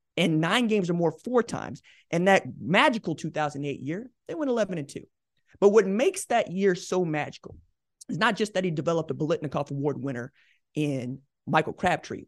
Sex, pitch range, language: male, 145-195 Hz, English